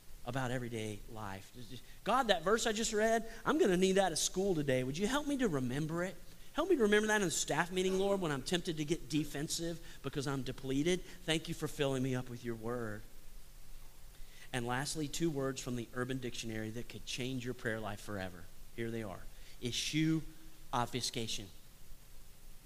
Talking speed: 190 wpm